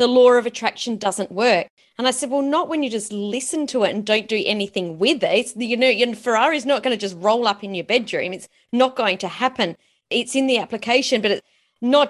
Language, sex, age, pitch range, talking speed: English, female, 30-49, 200-270 Hz, 240 wpm